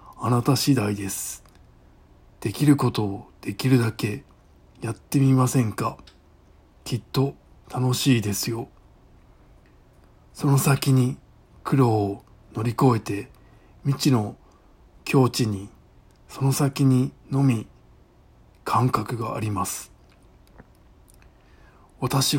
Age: 60-79